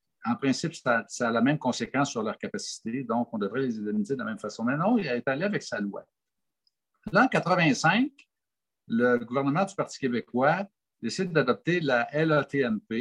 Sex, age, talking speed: male, 60-79, 185 wpm